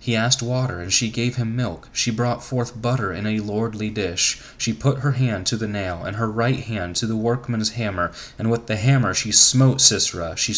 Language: English